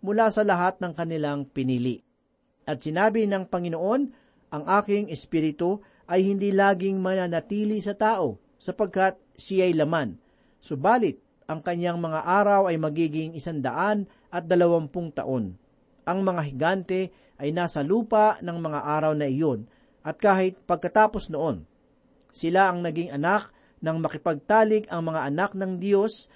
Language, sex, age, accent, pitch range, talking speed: Filipino, male, 40-59, native, 155-200 Hz, 135 wpm